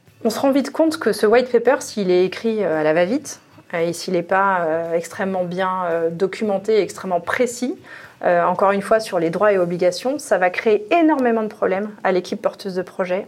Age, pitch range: 30-49, 185-230 Hz